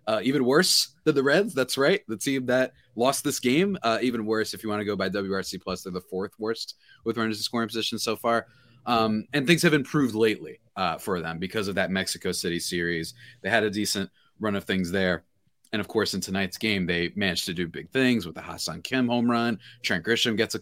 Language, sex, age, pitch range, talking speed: English, male, 30-49, 95-130 Hz, 235 wpm